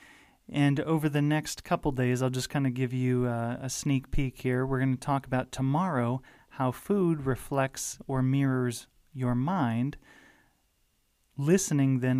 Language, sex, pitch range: English, male, 125-155 Hz